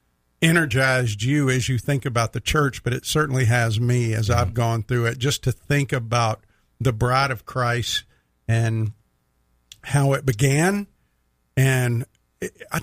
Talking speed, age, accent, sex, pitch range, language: 155 wpm, 50-69, American, male, 115-140 Hz, English